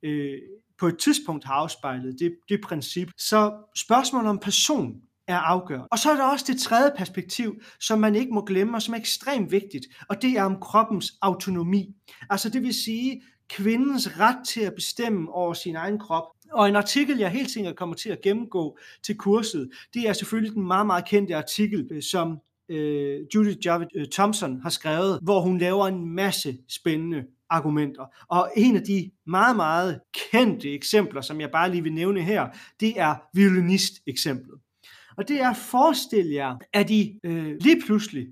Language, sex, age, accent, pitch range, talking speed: Danish, male, 30-49, native, 165-225 Hz, 175 wpm